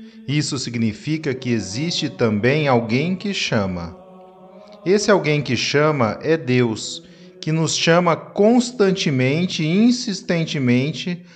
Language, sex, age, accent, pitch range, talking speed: Portuguese, male, 40-59, Brazilian, 135-195 Hz, 105 wpm